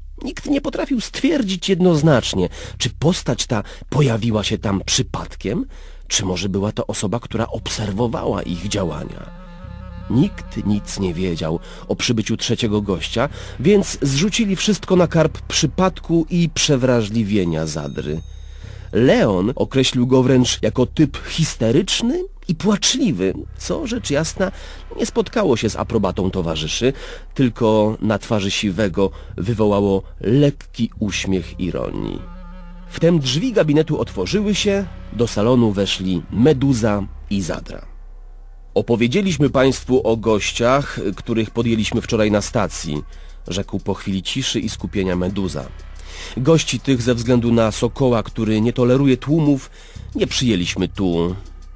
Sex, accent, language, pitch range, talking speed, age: male, native, Polish, 95-145 Hz, 120 wpm, 40-59